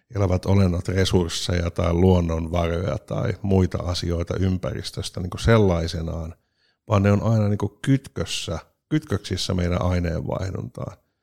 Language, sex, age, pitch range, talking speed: Finnish, male, 50-69, 90-110 Hz, 95 wpm